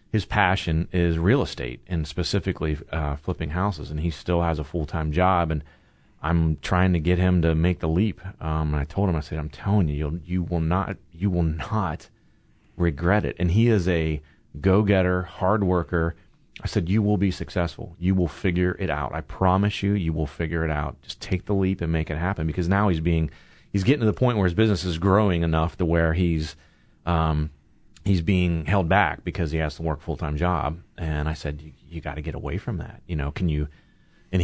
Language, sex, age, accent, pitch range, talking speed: English, male, 30-49, American, 80-95 Hz, 225 wpm